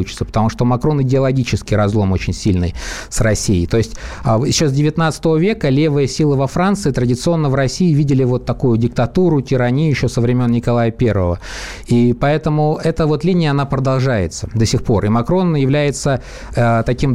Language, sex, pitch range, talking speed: Russian, male, 120-145 Hz, 160 wpm